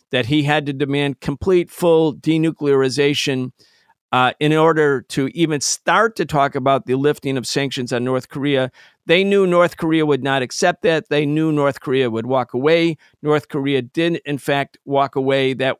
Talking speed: 180 wpm